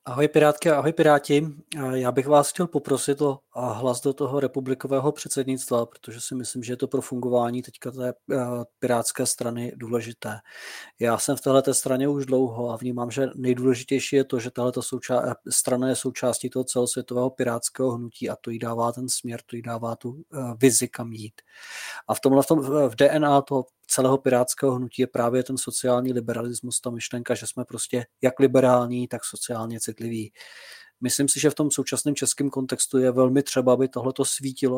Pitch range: 125-135 Hz